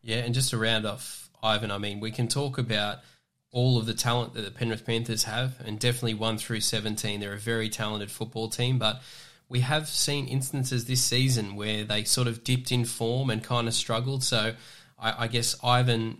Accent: Australian